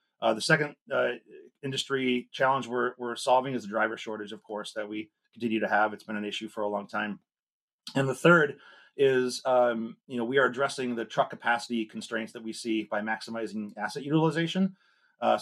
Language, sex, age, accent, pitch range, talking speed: English, male, 30-49, American, 110-130 Hz, 195 wpm